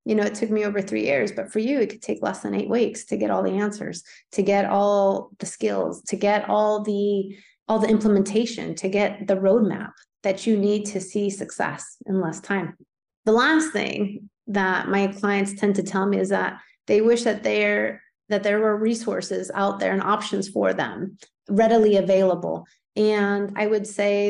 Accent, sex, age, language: American, female, 30-49, English